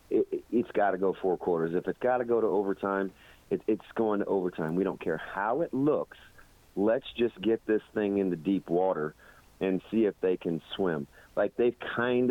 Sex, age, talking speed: male, 40-59, 200 wpm